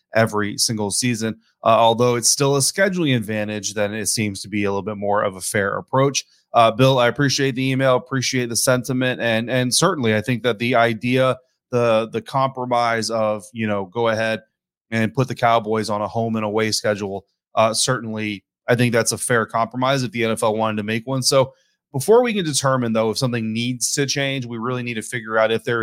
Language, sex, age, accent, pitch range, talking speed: English, male, 30-49, American, 110-130 Hz, 215 wpm